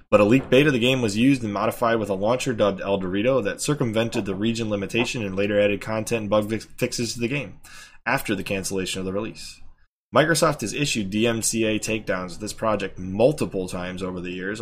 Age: 20-39